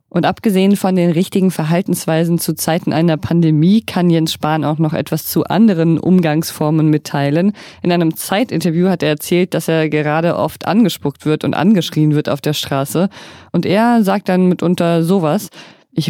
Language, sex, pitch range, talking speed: German, female, 160-190 Hz, 170 wpm